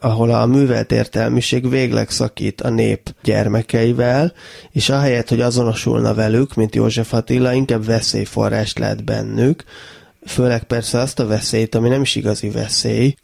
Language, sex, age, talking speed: Hungarian, male, 20-39, 140 wpm